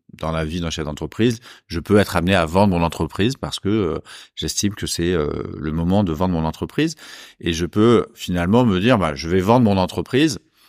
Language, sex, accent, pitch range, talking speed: French, male, French, 80-100 Hz, 215 wpm